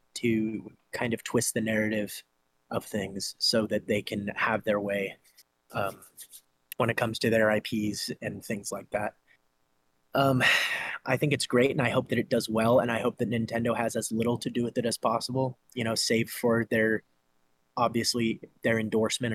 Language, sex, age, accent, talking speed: English, male, 20-39, American, 185 wpm